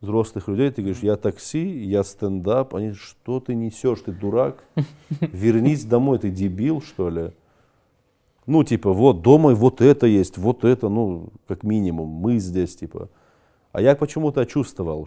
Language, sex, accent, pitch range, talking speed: Russian, male, native, 85-120 Hz, 160 wpm